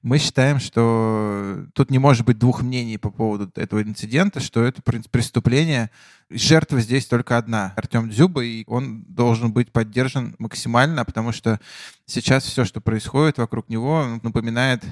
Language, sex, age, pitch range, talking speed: Russian, male, 20-39, 115-140 Hz, 155 wpm